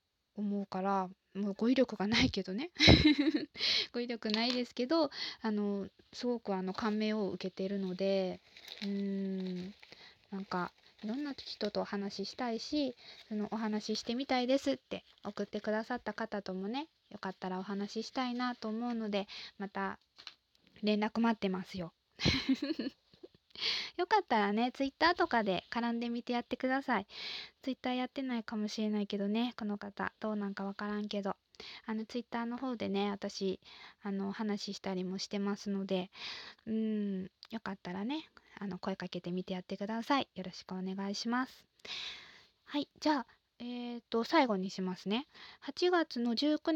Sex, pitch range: female, 195-250 Hz